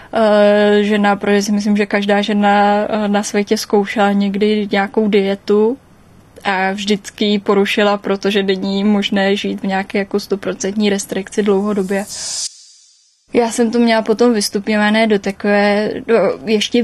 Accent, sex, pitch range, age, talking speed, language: native, female, 205-230 Hz, 10-29, 125 wpm, Czech